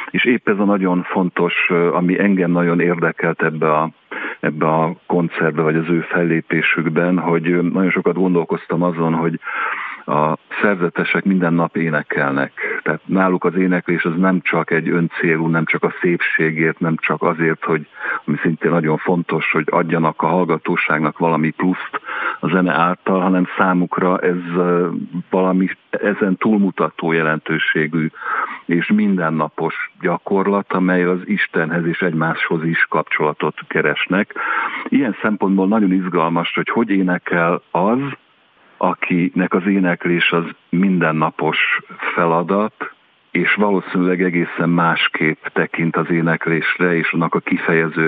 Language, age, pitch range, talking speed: Hungarian, 50-69, 80-90 Hz, 125 wpm